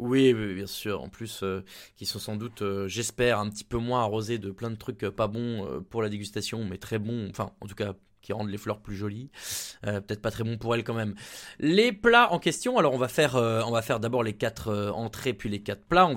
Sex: male